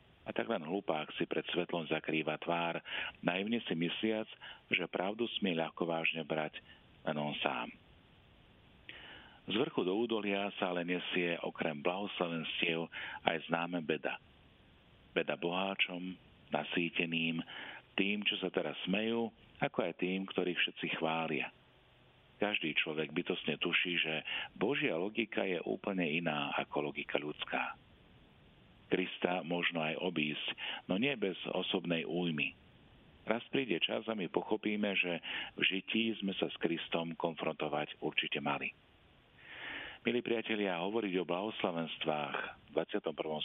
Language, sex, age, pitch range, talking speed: Slovak, male, 50-69, 80-95 Hz, 125 wpm